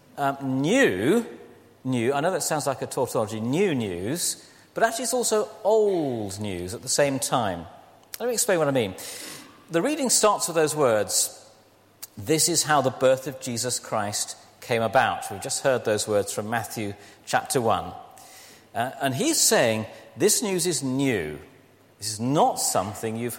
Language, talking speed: English, 165 wpm